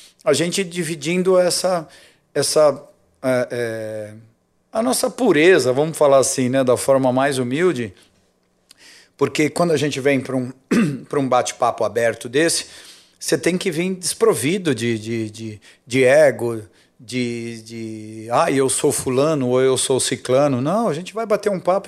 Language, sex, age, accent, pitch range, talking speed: Portuguese, male, 50-69, Brazilian, 120-145 Hz, 145 wpm